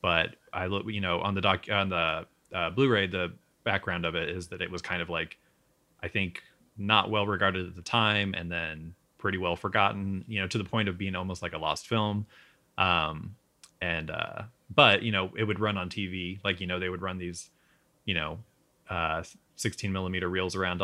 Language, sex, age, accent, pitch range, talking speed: English, male, 20-39, American, 90-110 Hz, 210 wpm